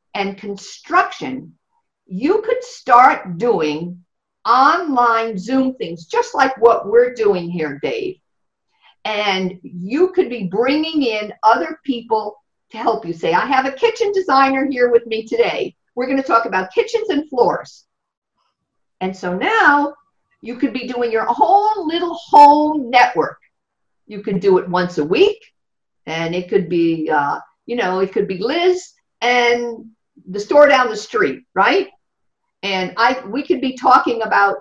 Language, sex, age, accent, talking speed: English, female, 50-69, American, 155 wpm